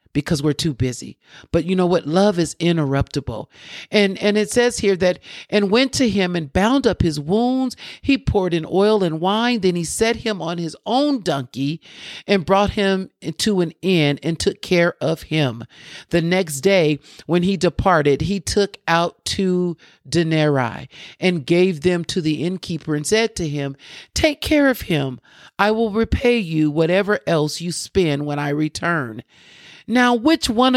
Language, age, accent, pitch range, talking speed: English, 50-69, American, 150-190 Hz, 175 wpm